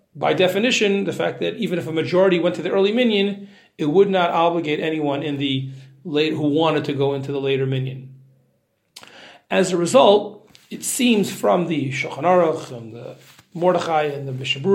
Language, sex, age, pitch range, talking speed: English, male, 40-59, 140-190 Hz, 185 wpm